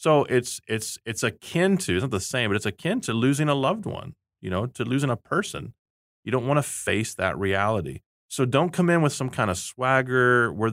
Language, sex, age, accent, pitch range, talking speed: English, male, 30-49, American, 90-115 Hz, 230 wpm